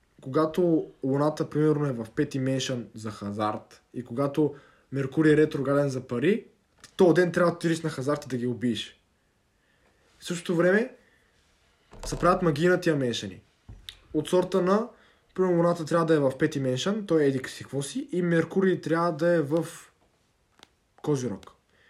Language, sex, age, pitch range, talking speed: Bulgarian, male, 20-39, 140-180 Hz, 160 wpm